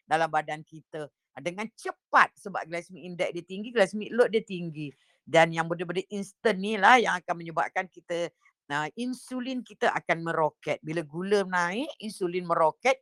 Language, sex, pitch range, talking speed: Indonesian, female, 165-235 Hz, 150 wpm